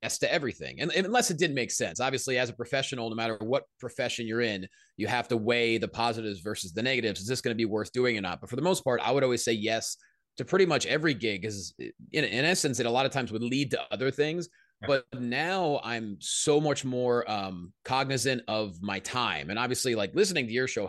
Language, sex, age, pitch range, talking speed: English, male, 30-49, 105-135 Hz, 240 wpm